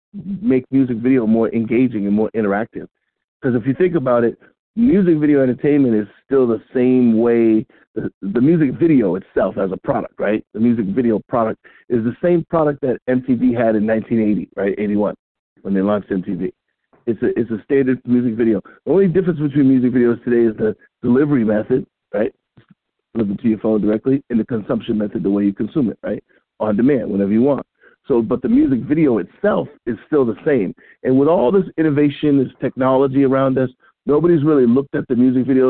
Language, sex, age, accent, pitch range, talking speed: English, male, 50-69, American, 110-135 Hz, 195 wpm